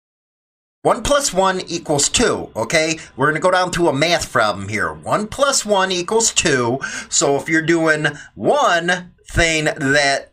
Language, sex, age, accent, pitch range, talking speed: English, male, 30-49, American, 140-185 Hz, 165 wpm